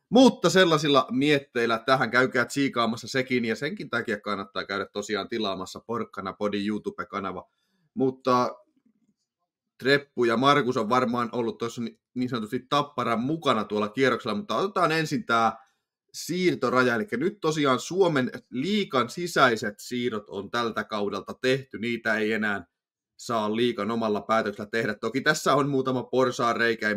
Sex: male